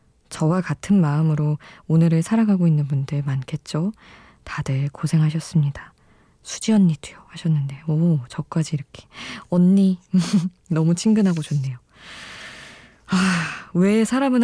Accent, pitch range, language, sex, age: native, 150-185 Hz, Korean, female, 20-39